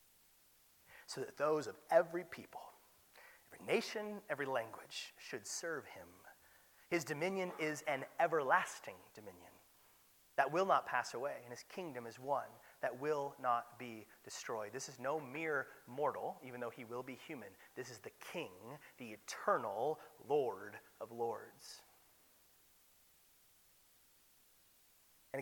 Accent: American